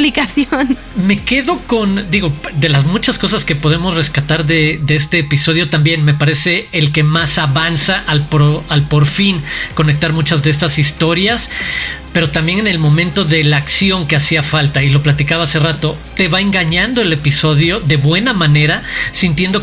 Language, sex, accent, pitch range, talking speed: Spanish, male, Mexican, 155-195 Hz, 170 wpm